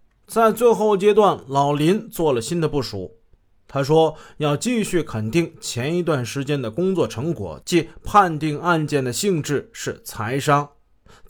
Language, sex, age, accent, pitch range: Chinese, male, 20-39, native, 120-175 Hz